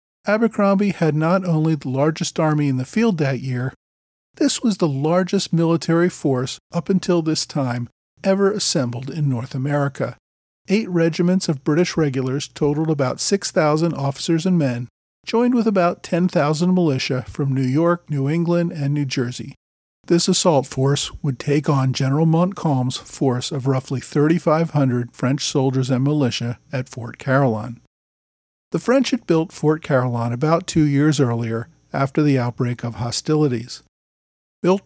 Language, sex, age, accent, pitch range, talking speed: English, male, 40-59, American, 130-170 Hz, 150 wpm